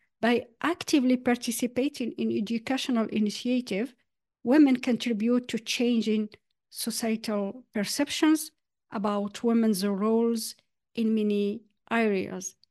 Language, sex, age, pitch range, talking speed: English, female, 50-69, 210-270 Hz, 85 wpm